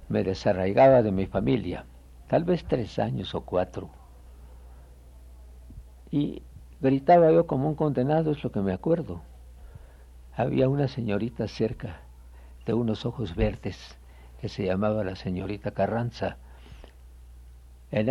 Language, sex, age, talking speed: Spanish, male, 60-79, 125 wpm